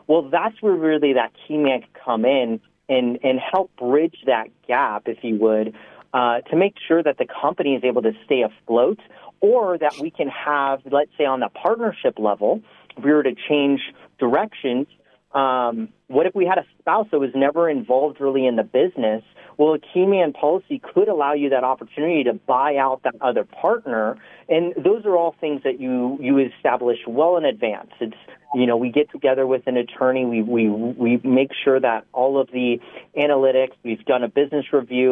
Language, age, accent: English, 40-59, American